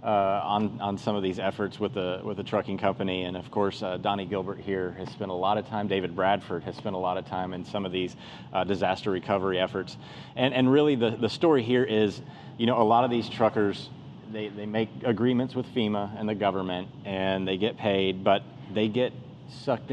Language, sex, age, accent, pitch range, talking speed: English, male, 30-49, American, 95-110 Hz, 225 wpm